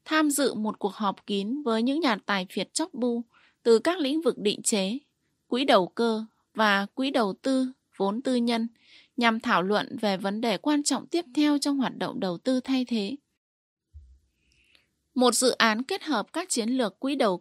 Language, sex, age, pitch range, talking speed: Vietnamese, female, 20-39, 210-270 Hz, 195 wpm